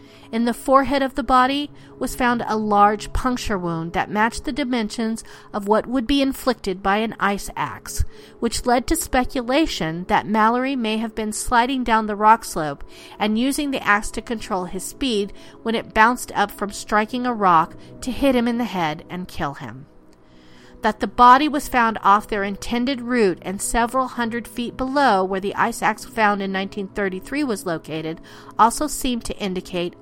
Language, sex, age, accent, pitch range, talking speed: English, female, 40-59, American, 195-255 Hz, 180 wpm